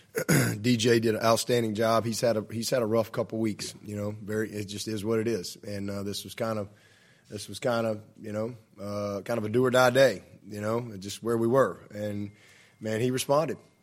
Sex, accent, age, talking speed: male, American, 20-39, 230 wpm